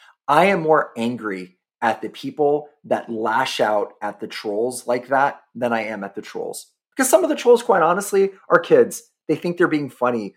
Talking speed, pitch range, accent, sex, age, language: 205 wpm, 110-145 Hz, American, male, 30-49, English